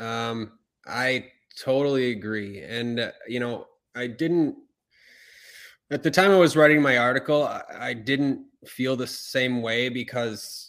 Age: 20-39